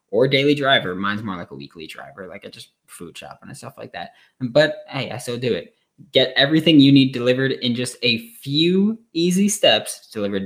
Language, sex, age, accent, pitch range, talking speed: English, male, 10-29, American, 110-150 Hz, 205 wpm